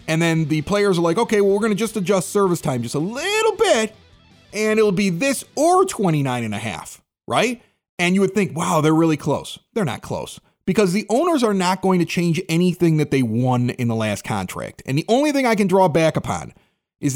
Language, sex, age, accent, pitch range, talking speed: English, male, 30-49, American, 155-220 Hz, 230 wpm